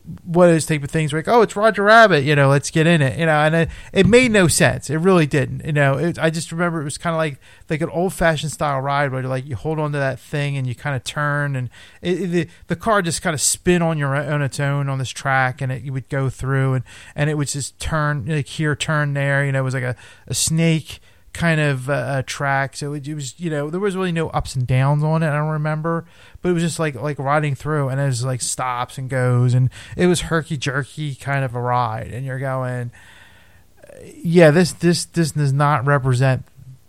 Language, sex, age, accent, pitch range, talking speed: English, male, 30-49, American, 125-160 Hz, 245 wpm